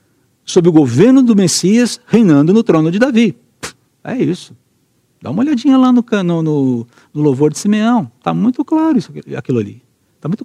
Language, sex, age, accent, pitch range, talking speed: Portuguese, male, 60-79, Brazilian, 125-200 Hz, 180 wpm